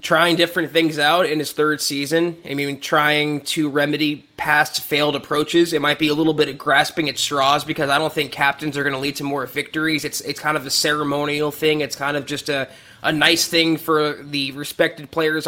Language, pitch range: English, 155-185 Hz